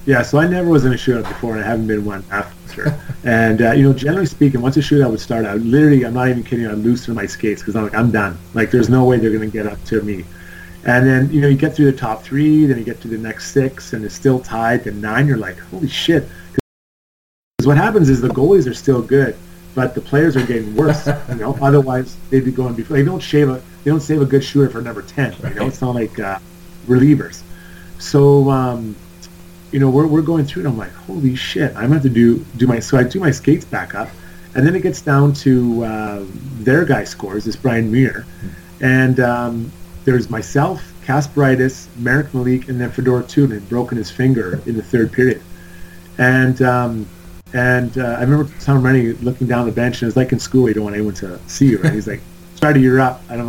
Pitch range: 110-135 Hz